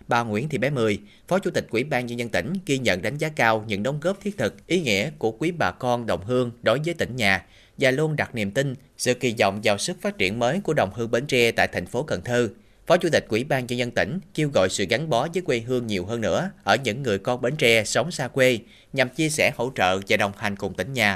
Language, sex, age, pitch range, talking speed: Vietnamese, male, 30-49, 100-130 Hz, 280 wpm